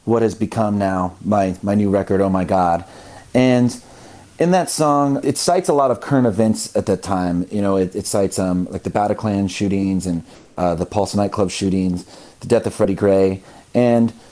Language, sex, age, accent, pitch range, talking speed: English, male, 30-49, American, 95-120 Hz, 195 wpm